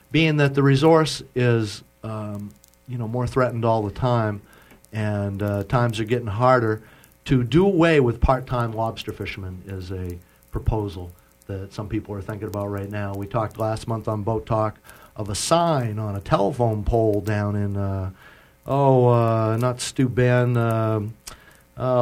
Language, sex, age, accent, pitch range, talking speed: English, male, 50-69, American, 105-130 Hz, 160 wpm